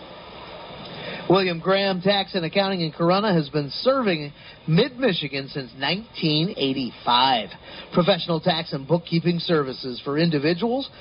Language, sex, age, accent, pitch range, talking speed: English, male, 40-59, American, 150-195 Hz, 110 wpm